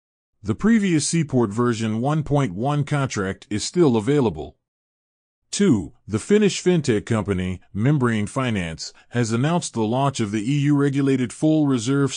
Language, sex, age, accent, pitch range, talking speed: English, male, 30-49, American, 110-145 Hz, 120 wpm